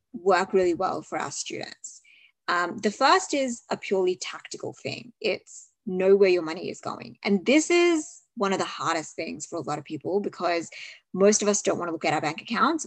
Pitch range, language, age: 175-220 Hz, English, 20-39